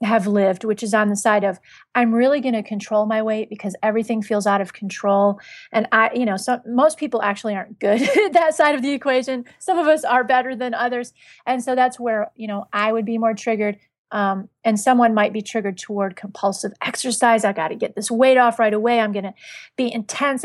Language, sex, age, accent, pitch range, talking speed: English, female, 30-49, American, 205-250 Hz, 230 wpm